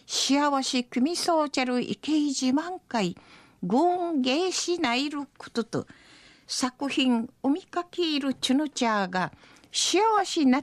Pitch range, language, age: 225-305 Hz, Japanese, 50-69